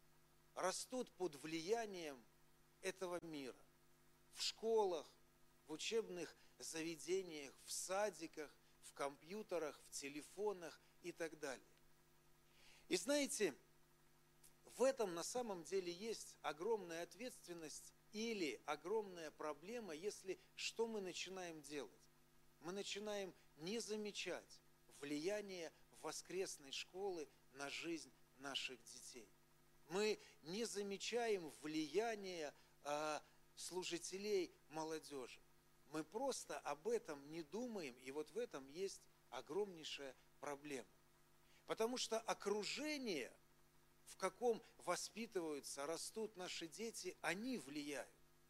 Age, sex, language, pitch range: 50-69, male, Russian, 155-225 Hz